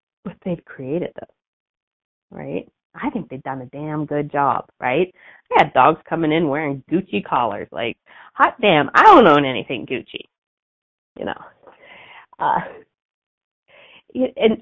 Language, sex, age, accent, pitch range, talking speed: English, female, 30-49, American, 160-235 Hz, 140 wpm